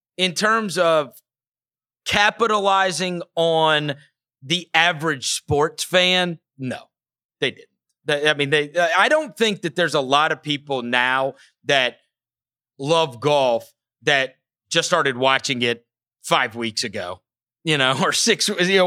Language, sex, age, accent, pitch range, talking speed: English, male, 30-49, American, 130-180 Hz, 130 wpm